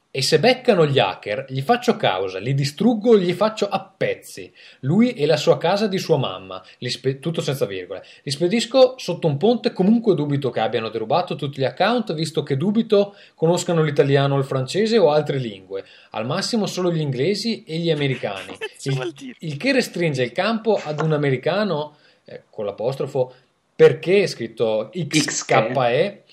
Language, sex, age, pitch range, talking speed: Italian, male, 20-39, 135-215 Hz, 165 wpm